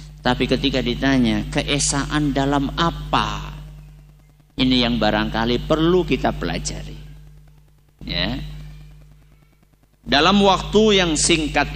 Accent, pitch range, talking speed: native, 145-155 Hz, 85 wpm